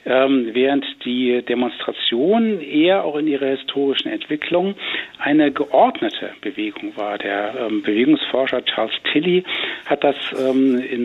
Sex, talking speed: male, 125 wpm